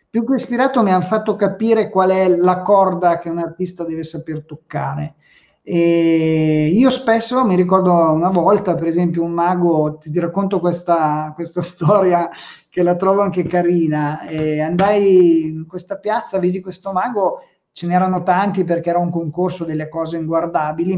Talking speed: 165 wpm